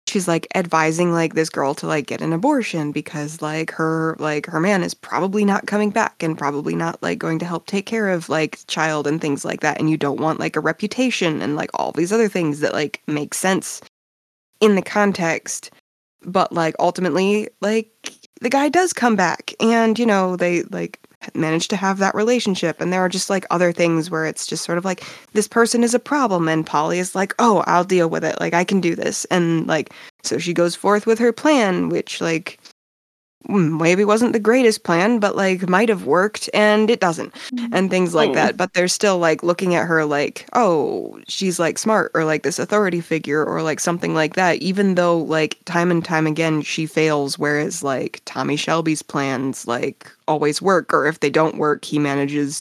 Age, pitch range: 20-39, 155-205 Hz